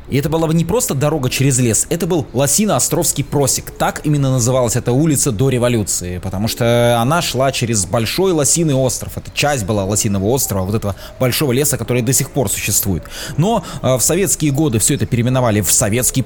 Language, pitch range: Russian, 110-145 Hz